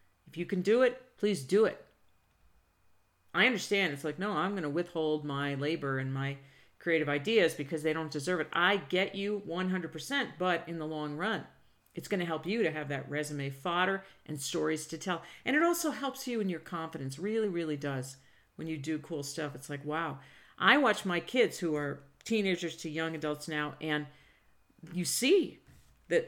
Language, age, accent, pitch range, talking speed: English, 50-69, American, 150-195 Hz, 195 wpm